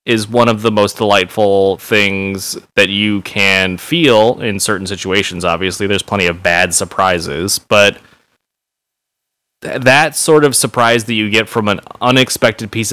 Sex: male